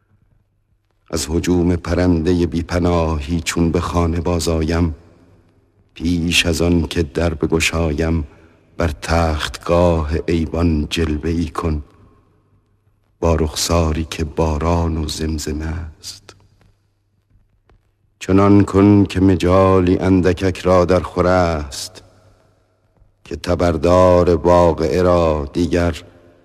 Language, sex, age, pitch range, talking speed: Persian, male, 60-79, 85-100 Hz, 95 wpm